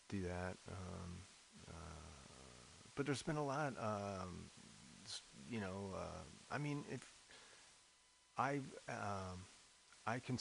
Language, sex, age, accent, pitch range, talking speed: English, male, 40-59, American, 90-105 Hz, 115 wpm